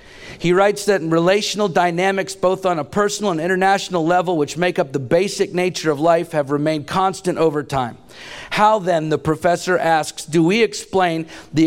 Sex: male